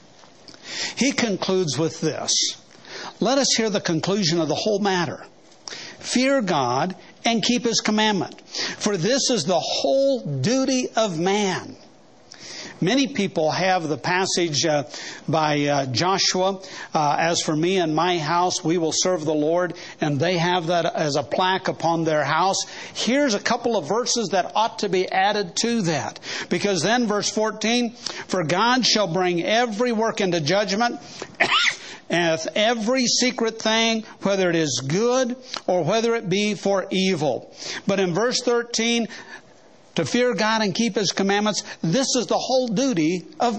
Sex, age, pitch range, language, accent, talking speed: male, 60-79, 175-230 Hz, English, American, 155 wpm